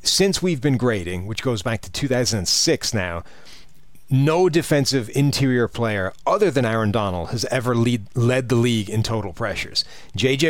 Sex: male